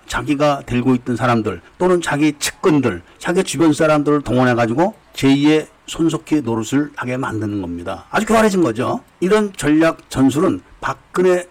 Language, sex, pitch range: Korean, male, 130-195 Hz